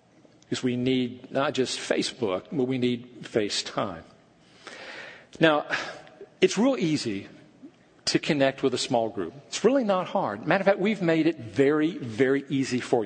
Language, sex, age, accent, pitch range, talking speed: English, male, 50-69, American, 145-200 Hz, 155 wpm